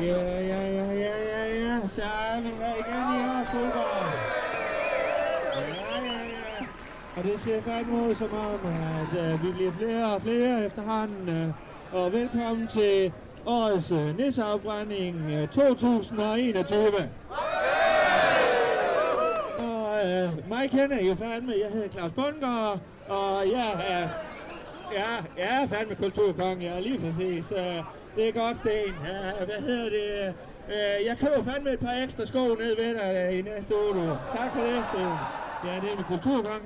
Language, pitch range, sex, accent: Danish, 180-230 Hz, male, native